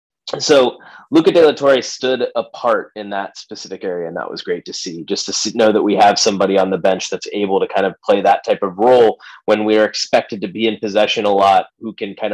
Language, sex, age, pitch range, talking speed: English, male, 30-49, 105-140 Hz, 250 wpm